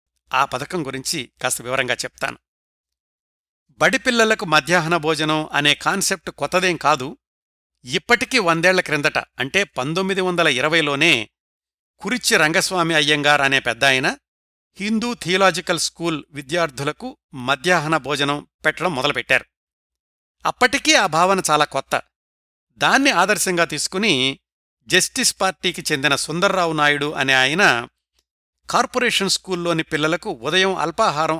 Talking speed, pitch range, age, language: 95 wpm, 140-185 Hz, 60-79, Telugu